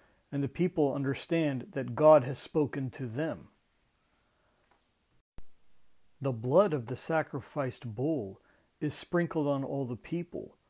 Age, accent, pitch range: 50-69, American, 135-165 Hz